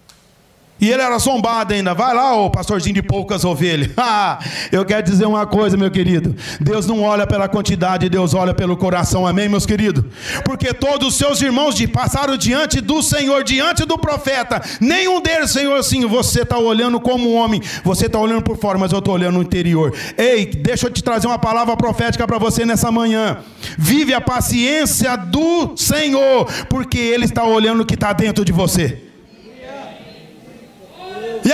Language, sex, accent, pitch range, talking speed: Portuguese, male, Brazilian, 195-290 Hz, 175 wpm